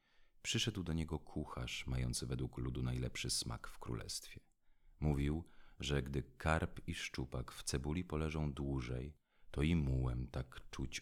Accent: native